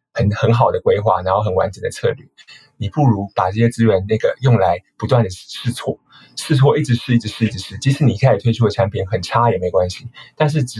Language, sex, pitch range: Chinese, male, 105-130 Hz